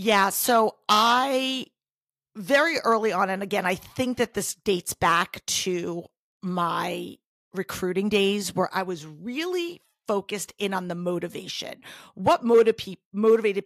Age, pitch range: 40-59, 185-245 Hz